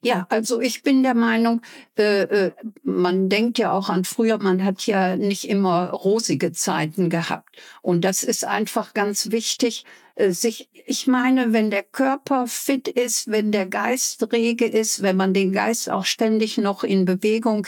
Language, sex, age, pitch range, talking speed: German, female, 60-79, 195-245 Hz, 170 wpm